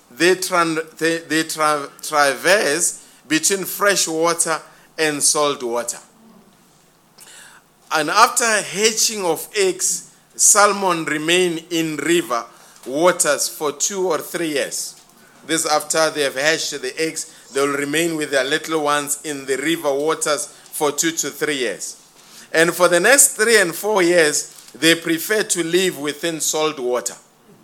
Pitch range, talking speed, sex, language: 155-185 Hz, 140 wpm, male, English